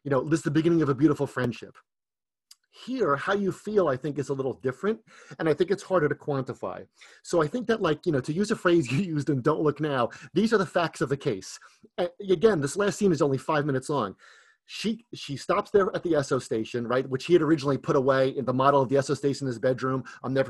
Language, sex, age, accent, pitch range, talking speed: English, male, 30-49, American, 135-170 Hz, 260 wpm